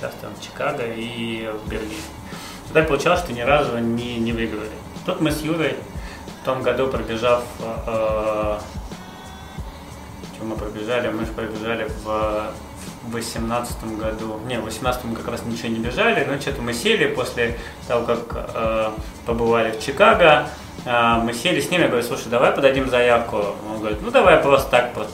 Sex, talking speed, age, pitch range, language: male, 170 wpm, 20-39, 110-130 Hz, Russian